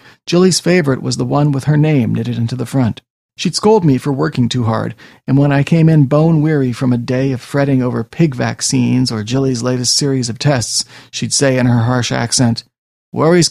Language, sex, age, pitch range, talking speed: English, male, 40-59, 120-145 Hz, 205 wpm